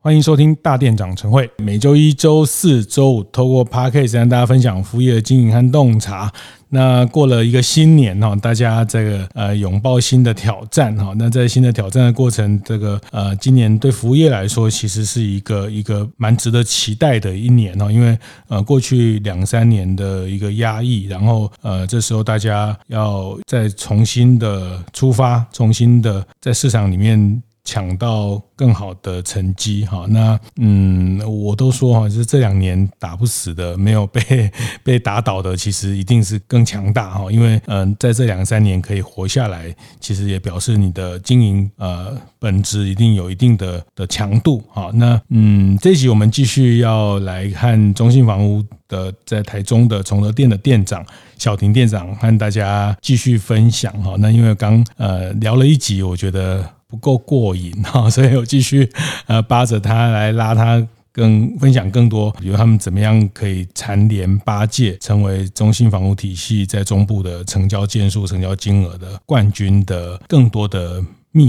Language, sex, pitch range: Chinese, male, 100-120 Hz